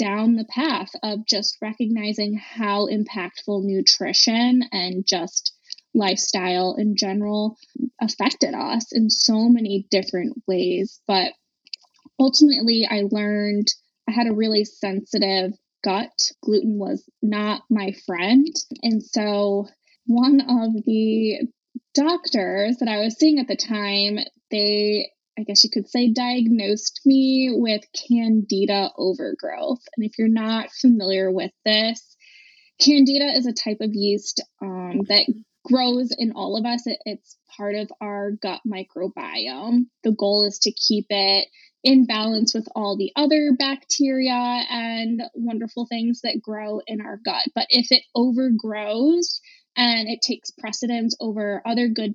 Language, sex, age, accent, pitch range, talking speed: English, female, 10-29, American, 205-250 Hz, 135 wpm